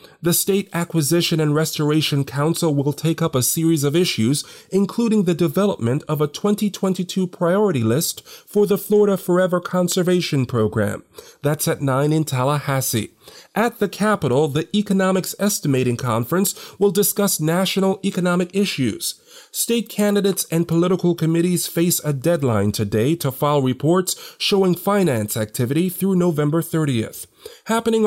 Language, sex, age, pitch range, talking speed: English, male, 40-59, 145-195 Hz, 135 wpm